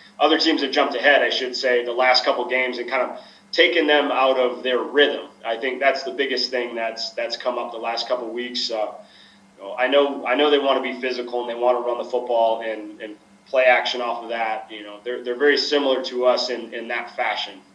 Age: 20-39